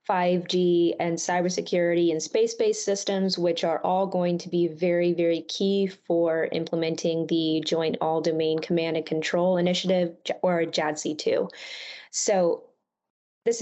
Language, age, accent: English, 20-39, American